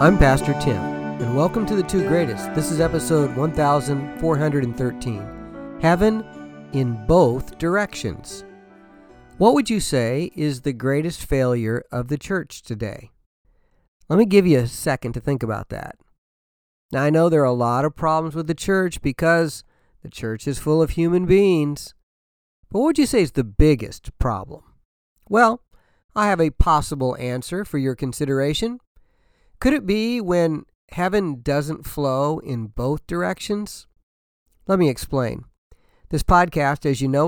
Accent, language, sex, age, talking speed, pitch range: American, English, male, 50-69, 155 wpm, 130-175 Hz